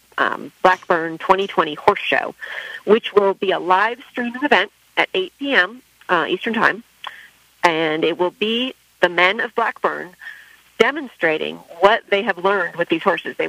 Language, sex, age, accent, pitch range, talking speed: English, female, 40-59, American, 175-225 Hz, 145 wpm